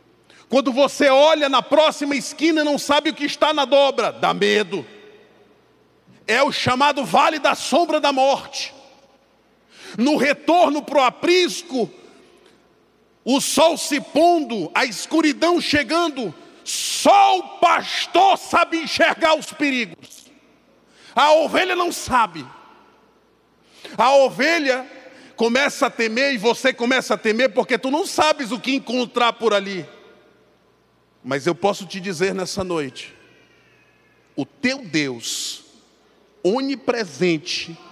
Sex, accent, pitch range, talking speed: male, Brazilian, 225-310 Hz, 120 wpm